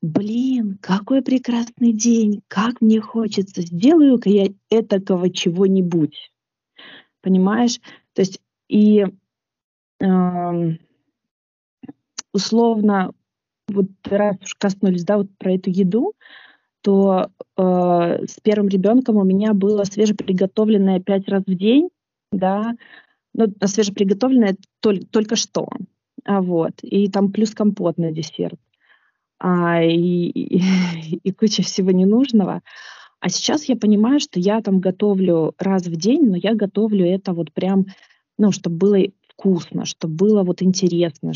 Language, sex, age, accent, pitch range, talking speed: Russian, female, 20-39, native, 180-215 Hz, 125 wpm